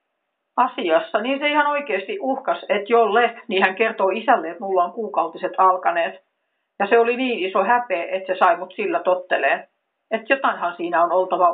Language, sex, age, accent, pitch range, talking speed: Finnish, female, 50-69, native, 180-225 Hz, 170 wpm